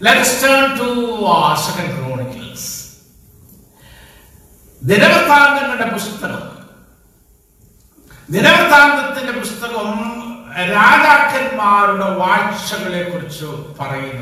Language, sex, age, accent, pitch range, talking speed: Malayalam, male, 50-69, native, 160-250 Hz, 50 wpm